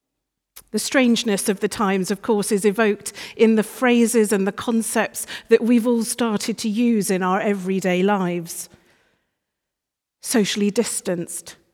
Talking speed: 140 wpm